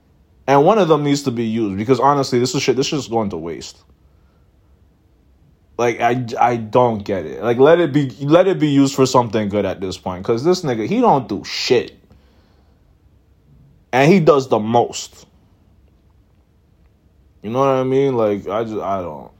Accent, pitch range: American, 95-125 Hz